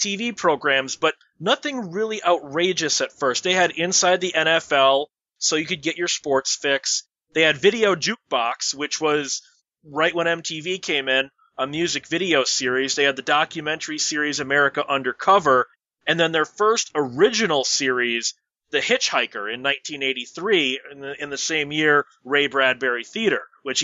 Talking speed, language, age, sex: 155 wpm, English, 30-49, male